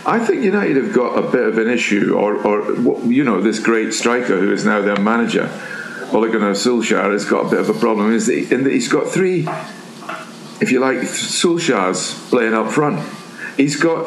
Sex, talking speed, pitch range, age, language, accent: male, 195 wpm, 115-185 Hz, 60-79, English, British